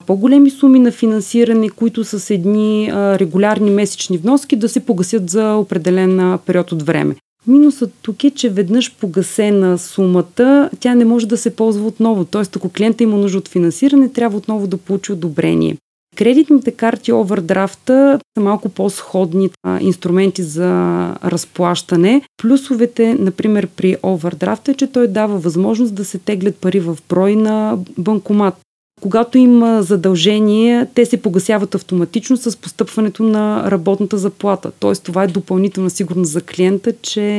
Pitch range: 185-225 Hz